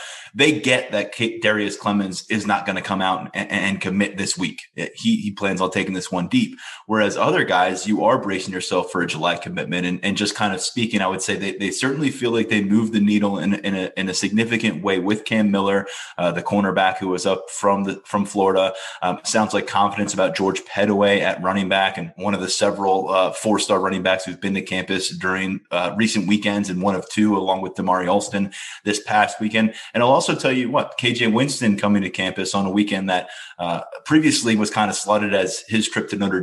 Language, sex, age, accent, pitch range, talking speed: English, male, 20-39, American, 95-105 Hz, 225 wpm